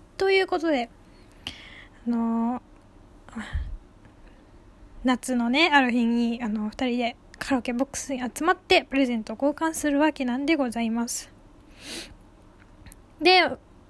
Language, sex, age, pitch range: Japanese, female, 10-29, 255-305 Hz